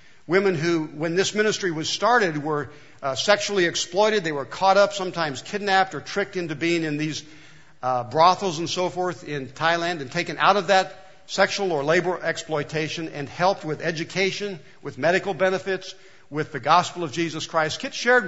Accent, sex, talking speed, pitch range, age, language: American, male, 175 wpm, 145-190 Hz, 60-79, English